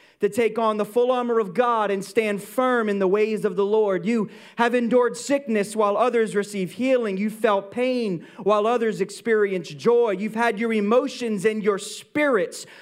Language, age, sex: English, 30-49, male